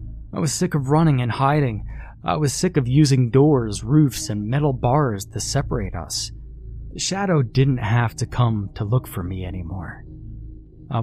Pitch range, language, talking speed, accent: 105-130 Hz, English, 170 wpm, American